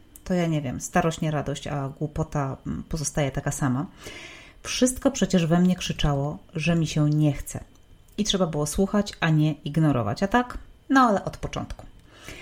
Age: 30-49